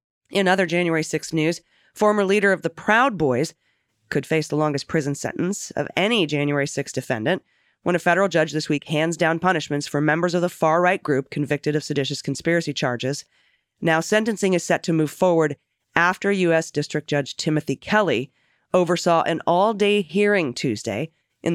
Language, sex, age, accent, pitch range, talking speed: English, female, 30-49, American, 145-175 Hz, 170 wpm